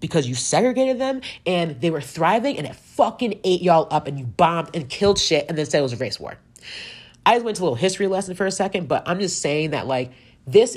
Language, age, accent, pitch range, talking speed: English, 30-49, American, 135-180 Hz, 255 wpm